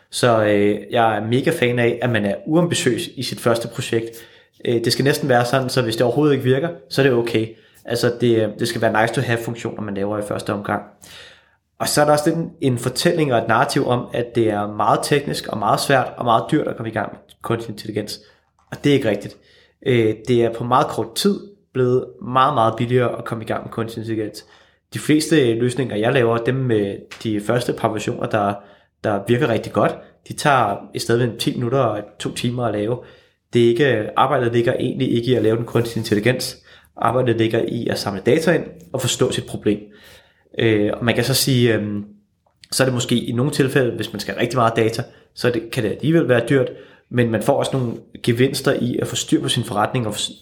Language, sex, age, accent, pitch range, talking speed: Danish, male, 30-49, native, 110-130 Hz, 220 wpm